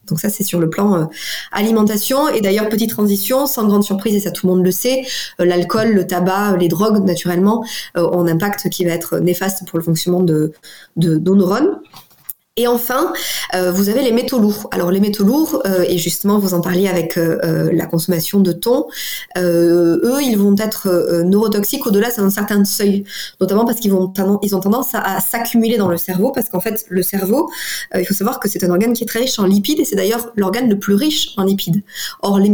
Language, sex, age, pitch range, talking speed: French, female, 20-39, 180-225 Hz, 230 wpm